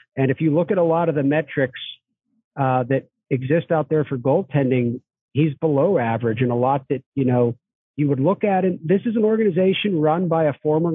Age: 40-59